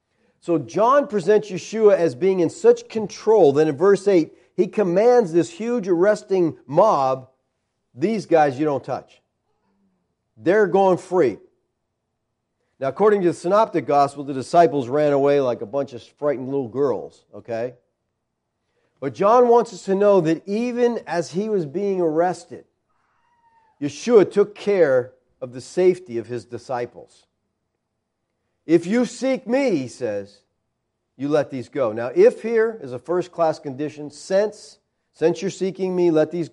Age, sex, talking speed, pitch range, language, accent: 50-69, male, 150 wpm, 140-205 Hz, English, American